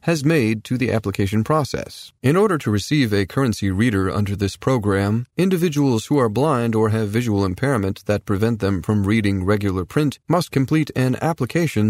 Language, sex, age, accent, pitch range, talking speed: English, male, 40-59, American, 105-130 Hz, 175 wpm